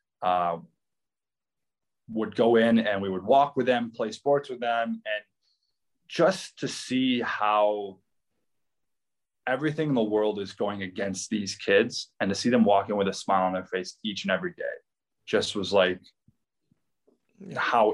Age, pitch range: 20-39, 95-110 Hz